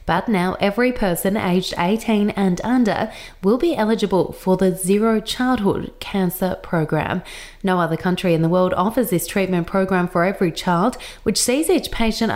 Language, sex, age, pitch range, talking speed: English, female, 20-39, 175-220 Hz, 165 wpm